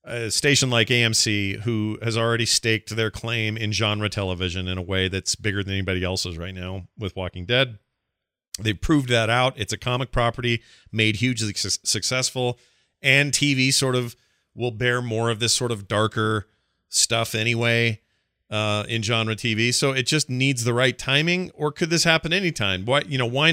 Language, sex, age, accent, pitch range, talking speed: English, male, 40-59, American, 105-130 Hz, 185 wpm